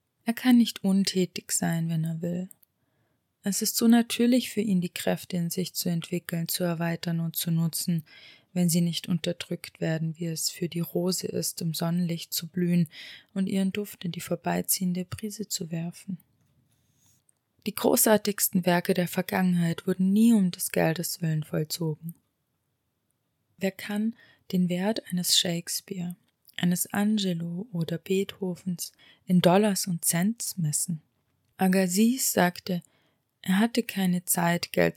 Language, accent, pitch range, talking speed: German, German, 165-190 Hz, 150 wpm